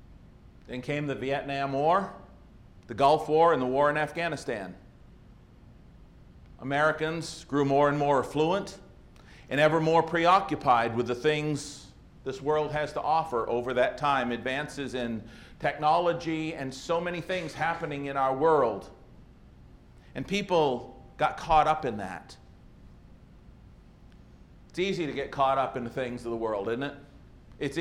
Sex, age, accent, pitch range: male, 50-69, American, 130-155 Hz